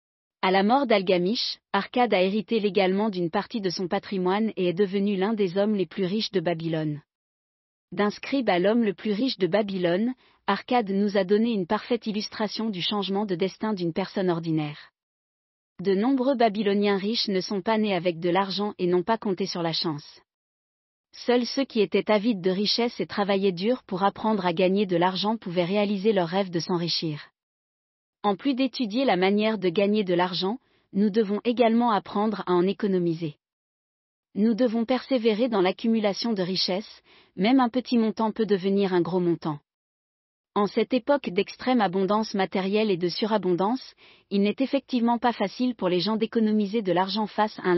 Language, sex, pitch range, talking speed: German, female, 185-225 Hz, 180 wpm